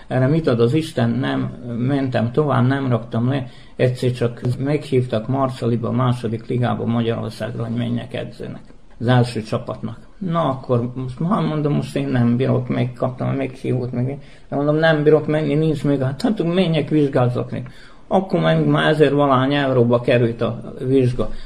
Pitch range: 120-140 Hz